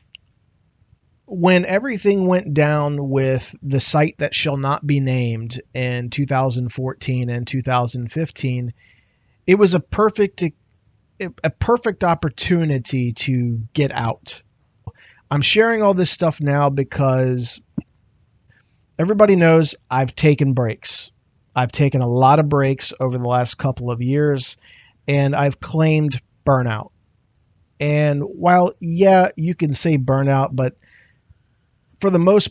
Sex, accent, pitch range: male, American, 120-150 Hz